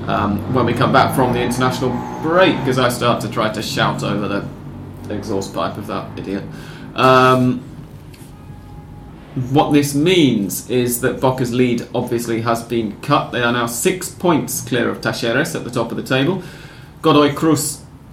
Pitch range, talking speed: 115-135 Hz, 170 wpm